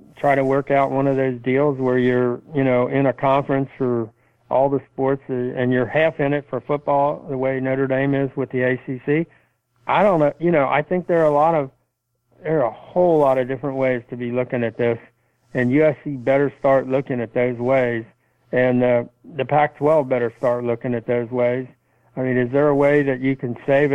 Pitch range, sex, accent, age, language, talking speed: 125-140 Hz, male, American, 60-79, English, 220 wpm